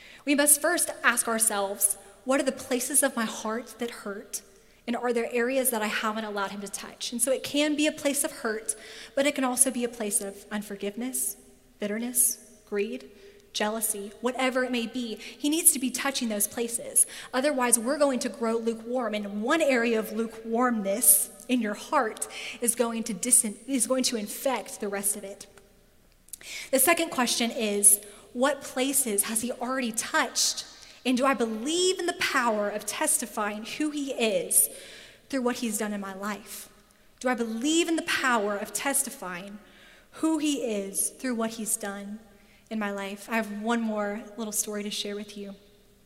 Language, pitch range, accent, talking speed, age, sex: English, 210-255 Hz, American, 180 wpm, 10-29, female